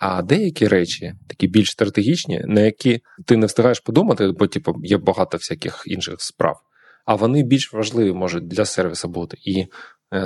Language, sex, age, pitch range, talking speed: Ukrainian, male, 20-39, 100-115 Hz, 170 wpm